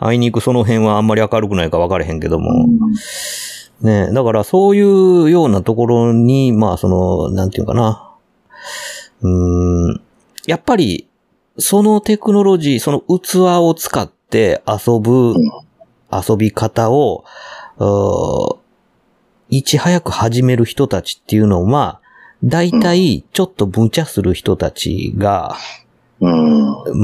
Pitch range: 95-145 Hz